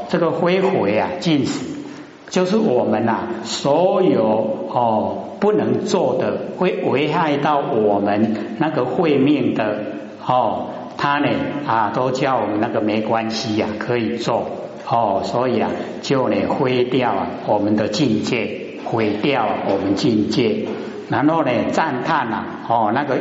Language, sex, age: Chinese, male, 60-79